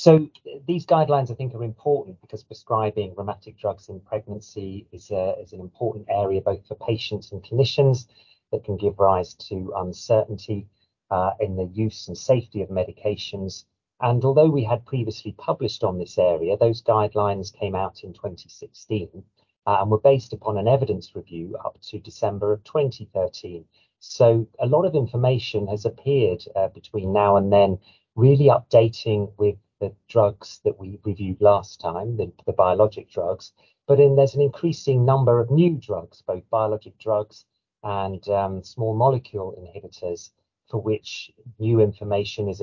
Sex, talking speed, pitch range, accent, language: male, 160 wpm, 100-125 Hz, British, English